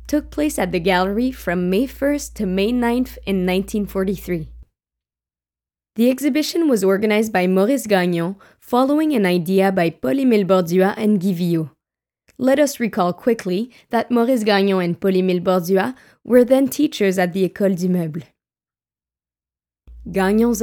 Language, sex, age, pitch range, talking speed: English, female, 20-39, 180-235 Hz, 135 wpm